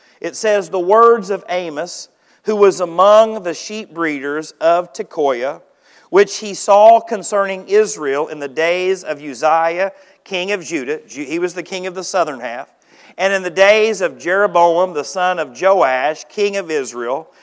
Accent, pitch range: American, 160-215 Hz